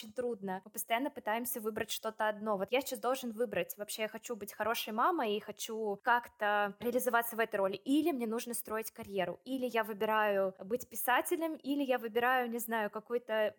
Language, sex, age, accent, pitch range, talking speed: Russian, female, 20-39, native, 220-260 Hz, 180 wpm